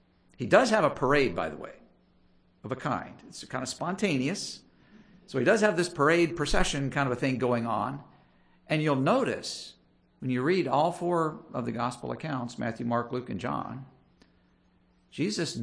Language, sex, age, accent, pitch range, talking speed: English, male, 50-69, American, 115-145 Hz, 175 wpm